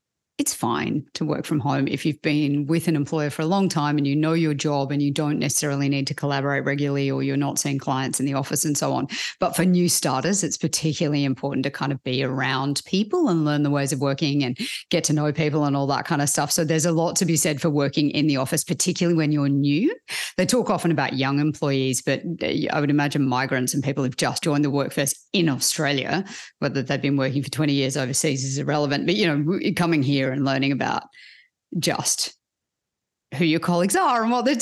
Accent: Australian